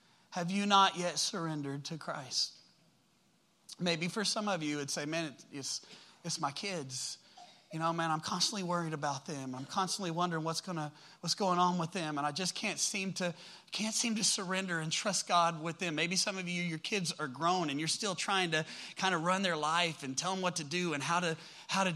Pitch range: 175-235 Hz